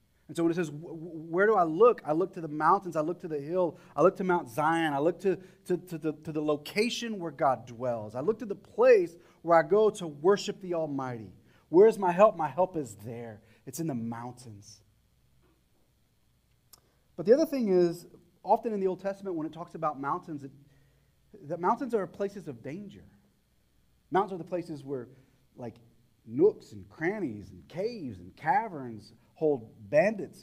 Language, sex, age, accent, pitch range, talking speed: English, male, 30-49, American, 125-180 Hz, 190 wpm